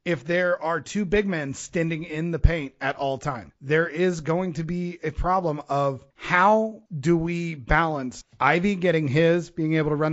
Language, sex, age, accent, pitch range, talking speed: English, male, 30-49, American, 140-170 Hz, 190 wpm